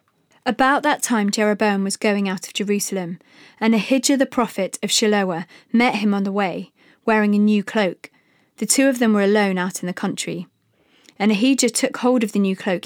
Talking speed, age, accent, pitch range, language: 195 wpm, 20-39, British, 190-230 Hz, English